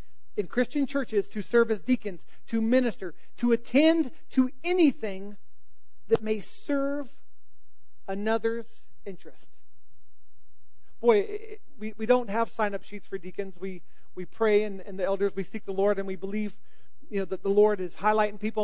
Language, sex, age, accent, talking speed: English, male, 40-59, American, 165 wpm